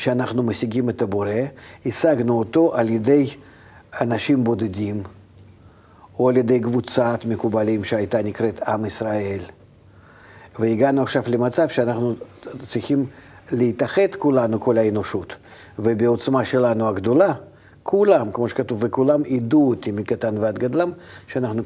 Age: 50-69